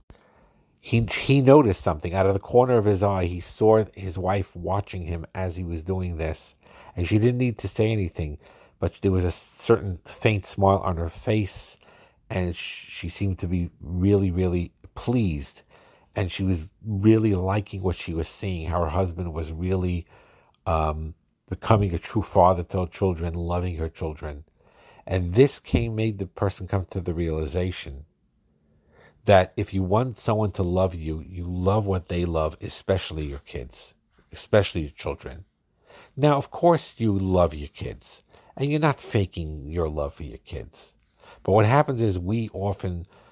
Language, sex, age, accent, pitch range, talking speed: English, male, 50-69, American, 85-105 Hz, 170 wpm